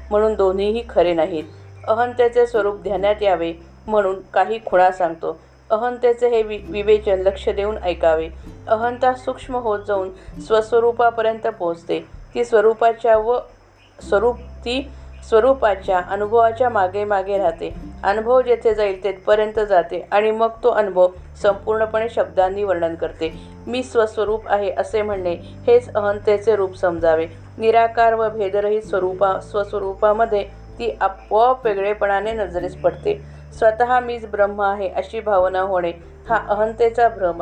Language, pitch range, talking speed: Marathi, 185-220 Hz, 120 wpm